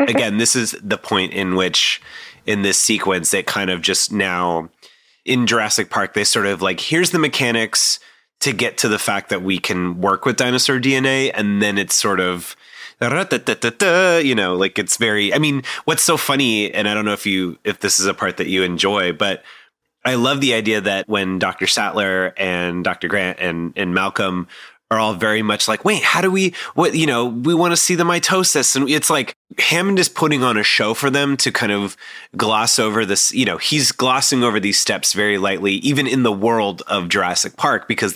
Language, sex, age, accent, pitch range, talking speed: English, male, 30-49, American, 95-130 Hz, 210 wpm